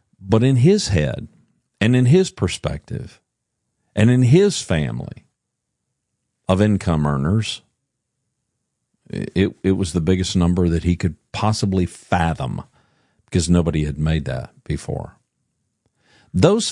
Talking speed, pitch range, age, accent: 120 wpm, 80-115 Hz, 50-69, American